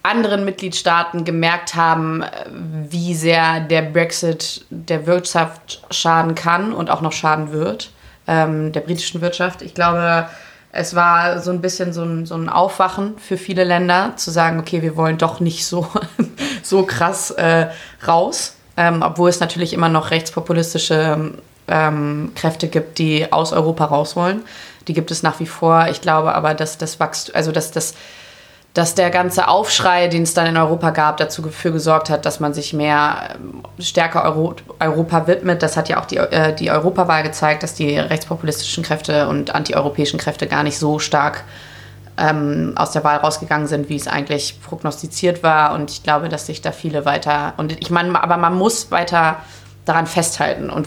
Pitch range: 155-170 Hz